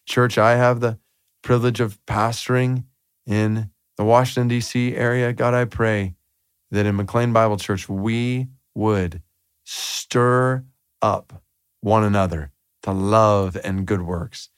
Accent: American